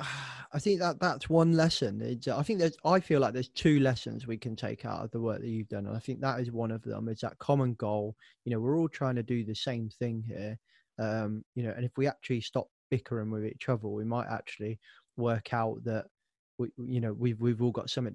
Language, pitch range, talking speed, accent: English, 110-135 Hz, 250 wpm, British